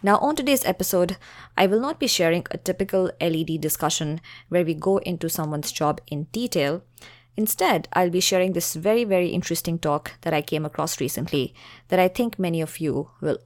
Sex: female